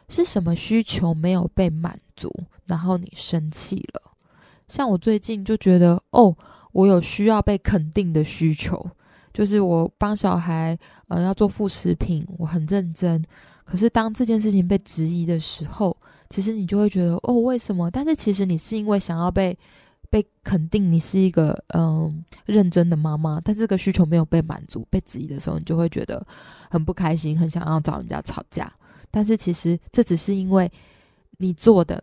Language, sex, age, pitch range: Chinese, female, 20-39, 170-210 Hz